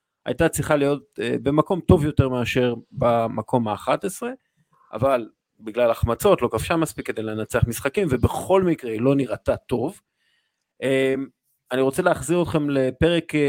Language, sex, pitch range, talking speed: Hebrew, male, 120-165 Hz, 135 wpm